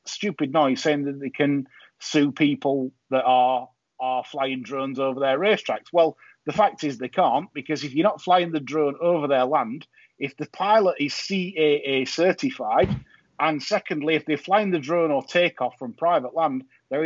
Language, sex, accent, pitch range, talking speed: English, male, British, 140-190 Hz, 185 wpm